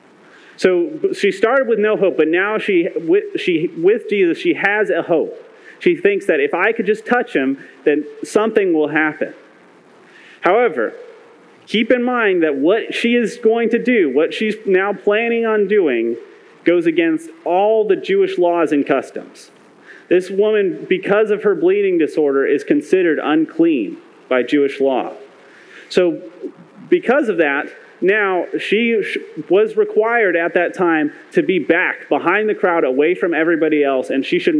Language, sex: English, male